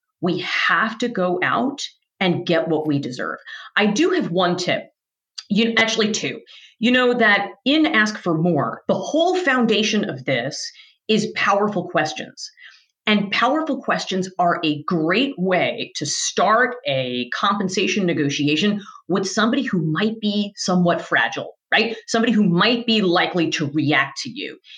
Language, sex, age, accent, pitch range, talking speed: English, female, 40-59, American, 175-230 Hz, 155 wpm